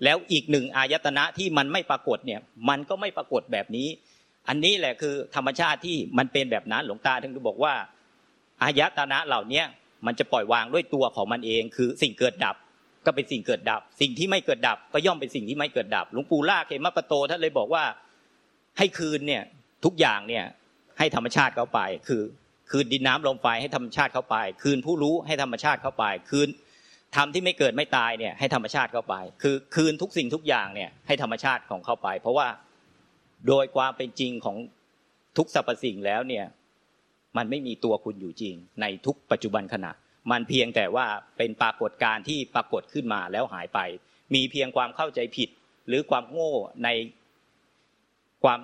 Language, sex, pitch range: Thai, male, 115-145 Hz